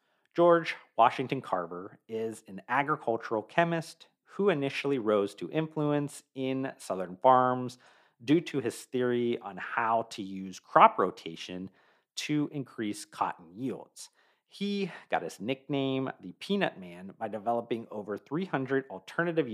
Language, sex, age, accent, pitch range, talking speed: English, male, 40-59, American, 110-150 Hz, 125 wpm